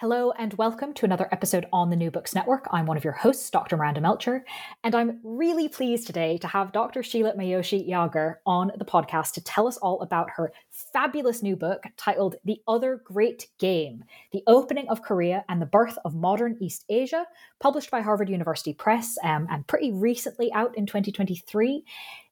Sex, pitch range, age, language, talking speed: female, 180-235 Hz, 20-39, English, 190 wpm